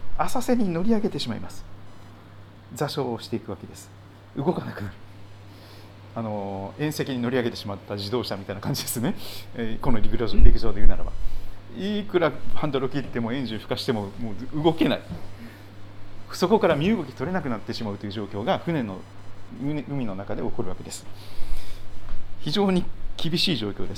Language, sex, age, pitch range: Japanese, male, 40-59, 100-145 Hz